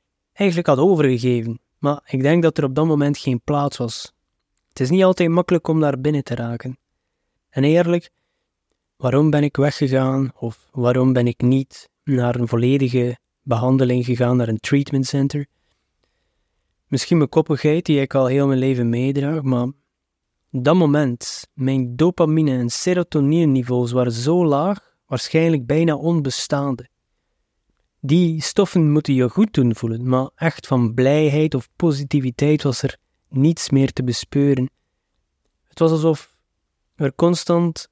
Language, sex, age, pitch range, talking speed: Dutch, male, 20-39, 125-155 Hz, 145 wpm